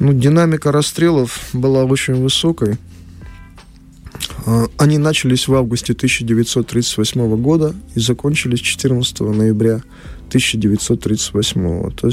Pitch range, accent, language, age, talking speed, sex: 90-130 Hz, native, Russian, 20-39, 85 wpm, male